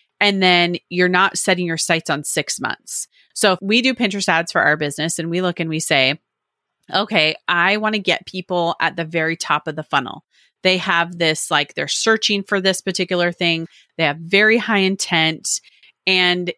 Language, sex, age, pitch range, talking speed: English, female, 30-49, 170-210 Hz, 195 wpm